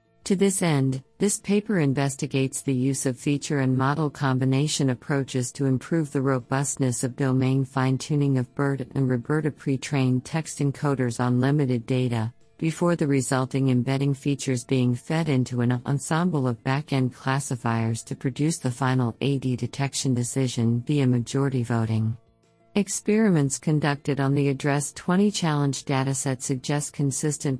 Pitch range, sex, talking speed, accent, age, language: 130-145 Hz, female, 135 wpm, American, 50-69, English